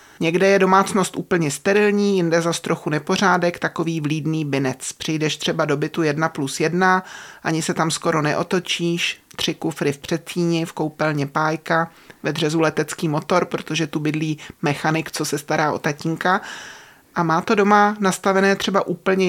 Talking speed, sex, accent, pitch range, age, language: 160 wpm, male, native, 165-200 Hz, 30-49, Czech